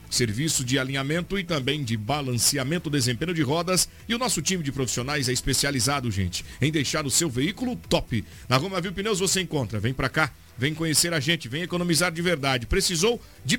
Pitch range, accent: 120-155 Hz, Brazilian